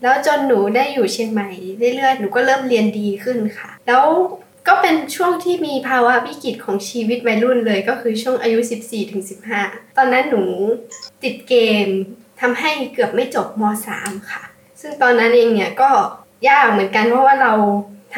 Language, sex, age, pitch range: Thai, female, 10-29, 210-265 Hz